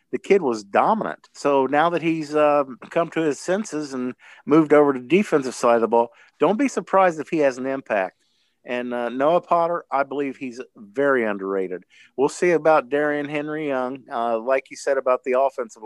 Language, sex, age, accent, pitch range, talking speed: English, male, 50-69, American, 110-130 Hz, 200 wpm